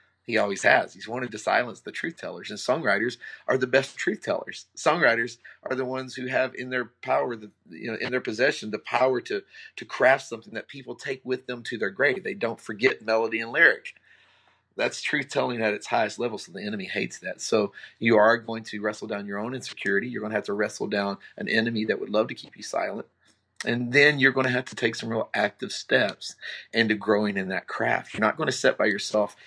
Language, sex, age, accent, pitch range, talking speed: English, male, 40-59, American, 110-135 Hz, 230 wpm